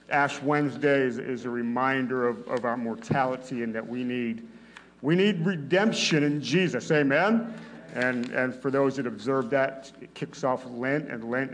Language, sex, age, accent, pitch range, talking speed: English, male, 50-69, American, 130-175 Hz, 170 wpm